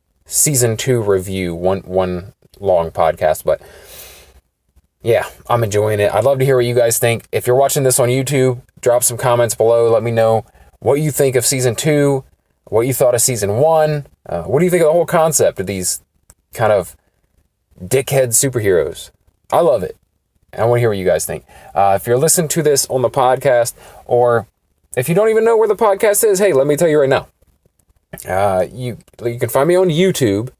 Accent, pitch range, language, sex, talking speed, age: American, 100-135 Hz, English, male, 205 wpm, 20-39